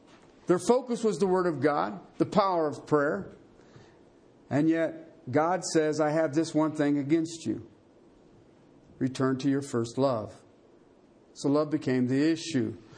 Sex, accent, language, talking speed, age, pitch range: male, American, English, 150 wpm, 50-69, 160-220 Hz